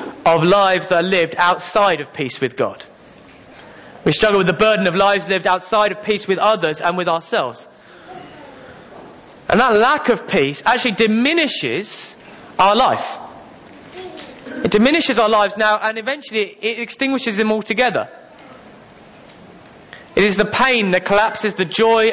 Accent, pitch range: British, 185-265 Hz